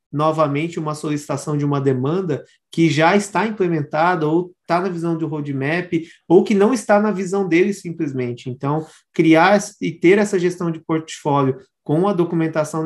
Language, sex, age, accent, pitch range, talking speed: Portuguese, male, 20-39, Brazilian, 150-190 Hz, 165 wpm